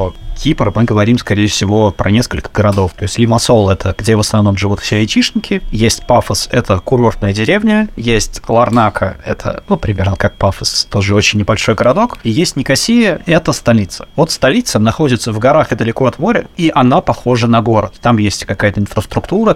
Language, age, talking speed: Russian, 20-39, 175 wpm